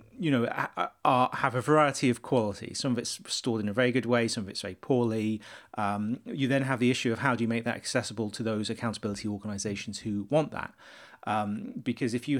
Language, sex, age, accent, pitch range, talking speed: Dutch, male, 30-49, British, 105-120 Hz, 225 wpm